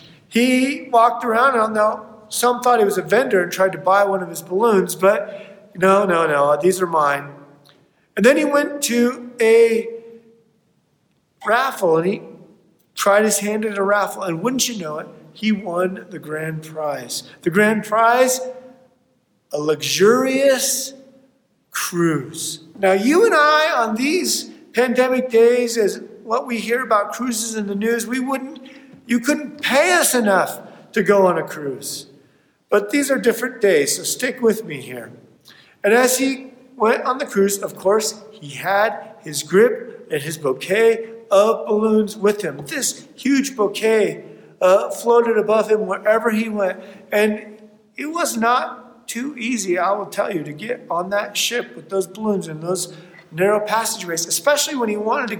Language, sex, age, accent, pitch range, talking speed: English, male, 50-69, American, 190-245 Hz, 165 wpm